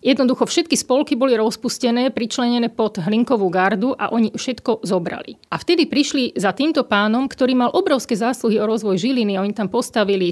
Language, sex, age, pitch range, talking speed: Slovak, female, 40-59, 205-255 Hz, 170 wpm